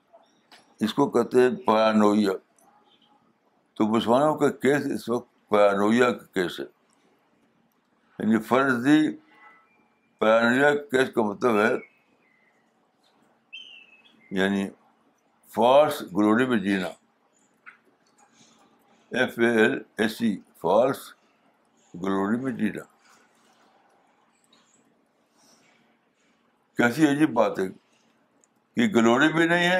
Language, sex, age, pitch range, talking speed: Urdu, male, 60-79, 105-135 Hz, 75 wpm